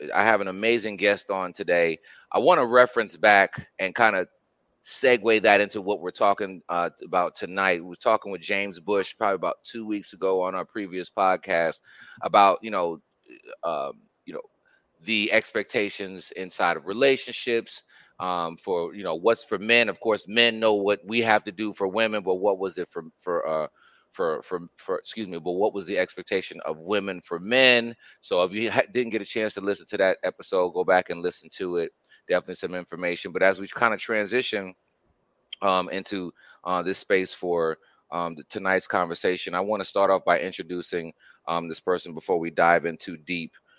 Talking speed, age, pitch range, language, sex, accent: 195 wpm, 30-49, 90-115 Hz, English, male, American